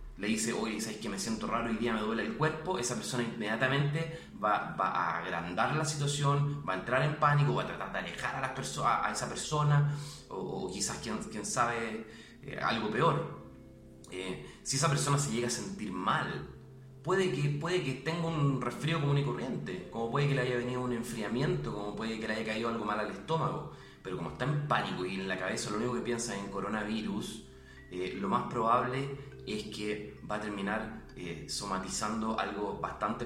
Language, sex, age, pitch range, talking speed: Spanish, male, 30-49, 100-140 Hz, 205 wpm